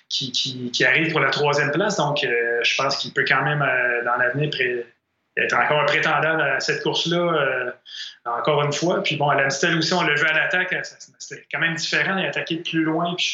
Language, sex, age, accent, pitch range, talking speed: French, male, 30-49, Canadian, 140-170 Hz, 240 wpm